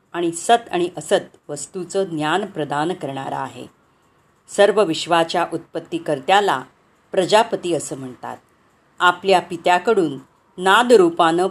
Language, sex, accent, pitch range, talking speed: Marathi, female, native, 155-190 Hz, 95 wpm